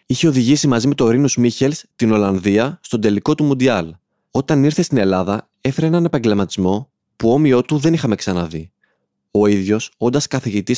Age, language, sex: 20-39, Greek, male